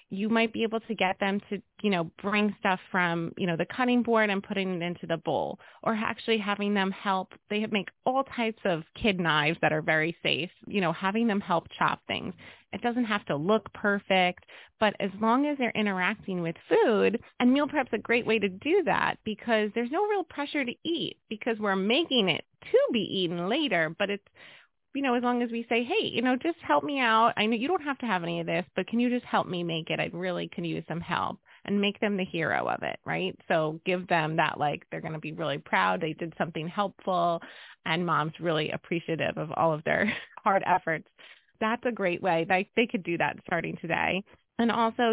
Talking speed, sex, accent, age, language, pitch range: 225 wpm, female, American, 30-49, English, 170-230 Hz